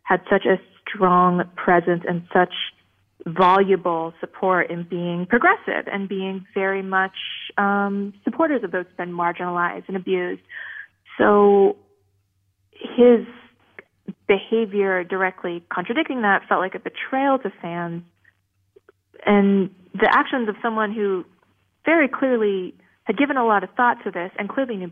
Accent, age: American, 30-49